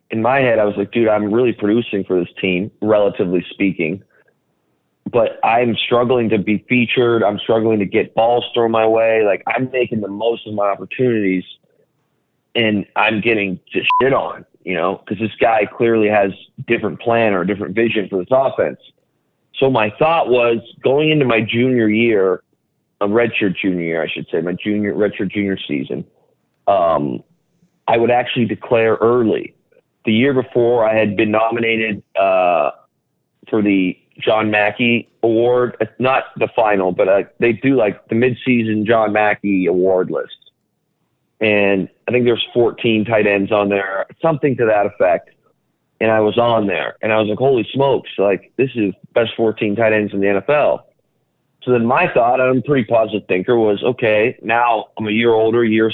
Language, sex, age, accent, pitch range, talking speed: English, male, 30-49, American, 105-120 Hz, 175 wpm